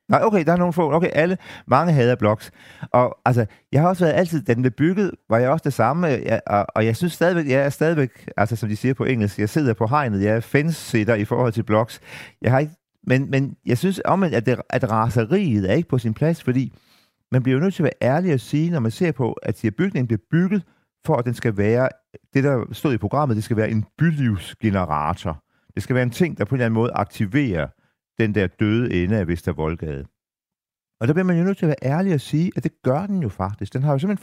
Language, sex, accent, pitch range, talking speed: Danish, male, native, 110-155 Hz, 245 wpm